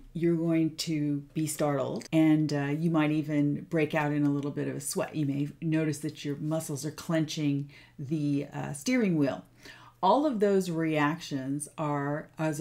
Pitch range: 145-170 Hz